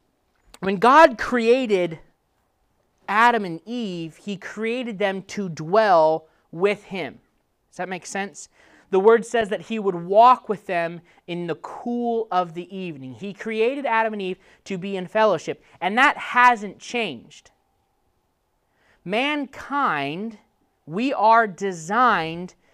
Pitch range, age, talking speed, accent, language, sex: 150-220 Hz, 30-49, 130 wpm, American, English, male